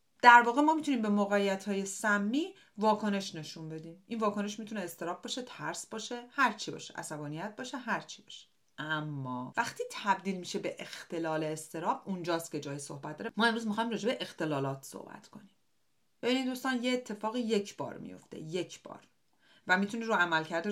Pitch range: 165-235 Hz